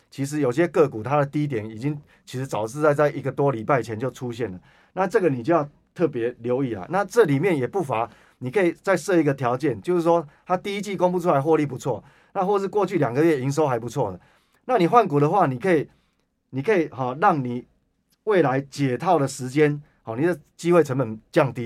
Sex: male